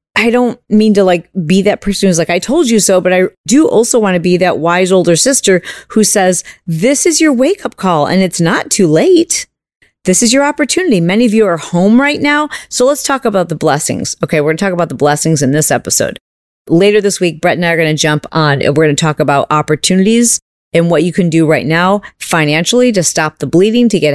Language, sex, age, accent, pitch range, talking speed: English, female, 40-59, American, 165-235 Hz, 240 wpm